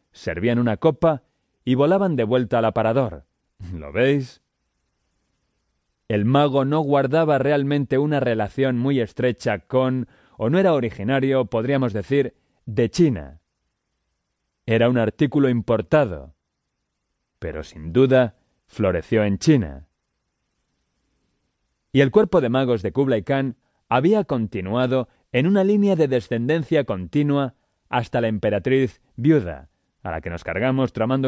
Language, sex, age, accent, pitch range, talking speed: English, male, 30-49, Spanish, 105-140 Hz, 125 wpm